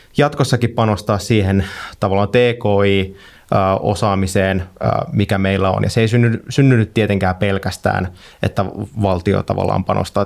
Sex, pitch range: male, 95-110 Hz